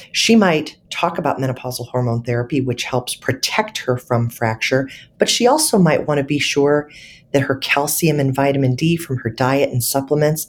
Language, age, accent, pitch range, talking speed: English, 40-59, American, 130-165 Hz, 185 wpm